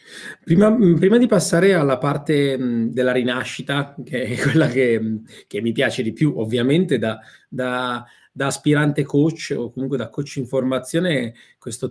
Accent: native